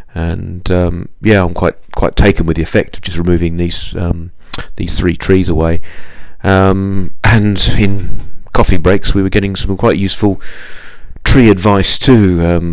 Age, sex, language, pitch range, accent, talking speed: 40-59, male, English, 90-100 Hz, British, 160 wpm